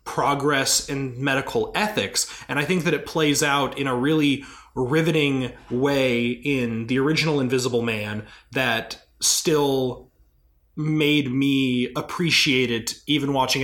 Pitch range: 115-150 Hz